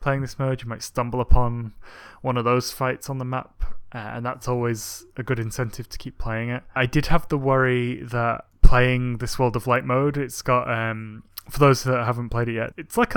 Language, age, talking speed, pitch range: English, 20-39, 220 wpm, 115-135 Hz